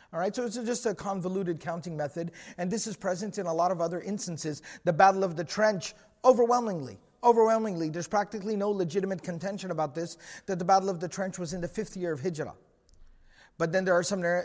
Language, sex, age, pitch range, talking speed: English, male, 30-49, 165-195 Hz, 210 wpm